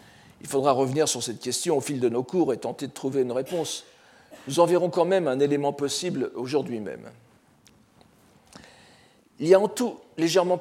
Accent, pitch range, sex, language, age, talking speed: French, 130-185 Hz, male, French, 50-69, 185 wpm